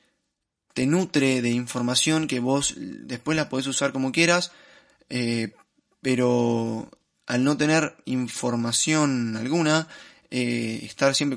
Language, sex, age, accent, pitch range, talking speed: Spanish, male, 20-39, Argentinian, 120-145 Hz, 115 wpm